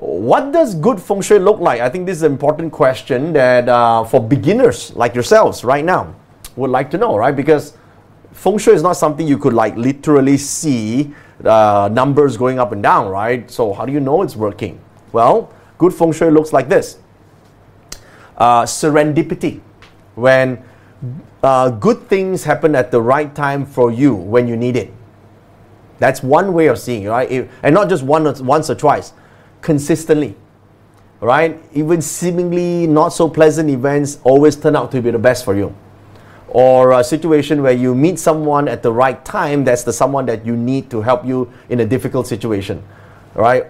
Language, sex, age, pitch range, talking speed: English, male, 30-49, 115-155 Hz, 185 wpm